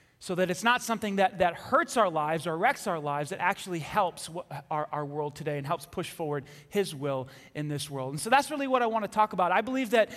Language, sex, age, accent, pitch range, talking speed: English, male, 30-49, American, 185-265 Hz, 255 wpm